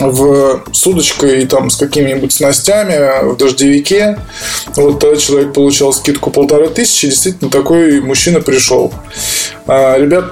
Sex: male